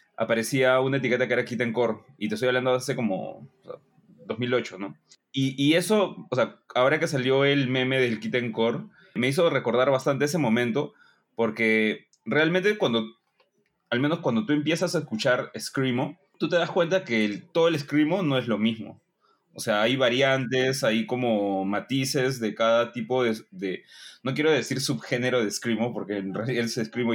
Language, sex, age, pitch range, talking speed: Spanish, male, 20-39, 115-155 Hz, 190 wpm